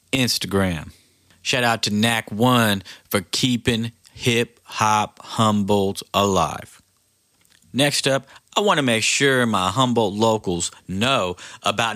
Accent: American